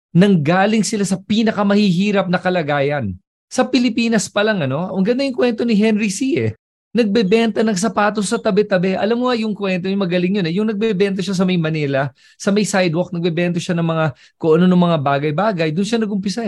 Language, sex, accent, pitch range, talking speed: English, male, Filipino, 155-195 Hz, 200 wpm